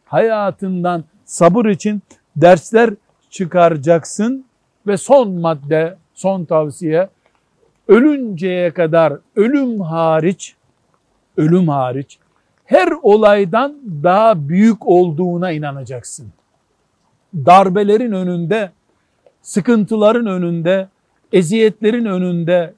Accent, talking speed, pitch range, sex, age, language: native, 75 wpm, 165-210 Hz, male, 60-79, Turkish